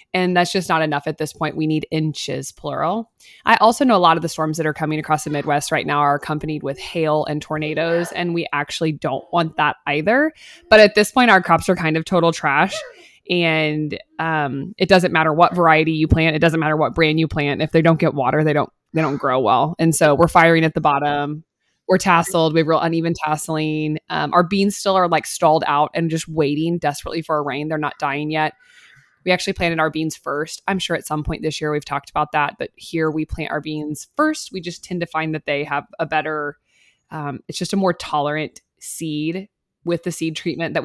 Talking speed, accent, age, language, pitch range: 230 wpm, American, 20-39, English, 150-180 Hz